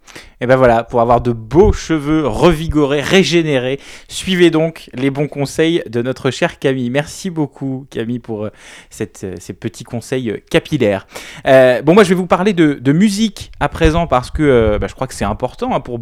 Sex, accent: male, French